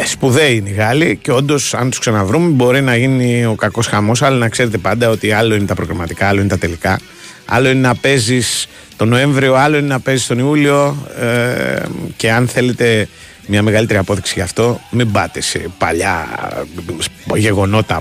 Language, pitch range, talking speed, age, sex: Greek, 100-125 Hz, 175 wpm, 30-49, male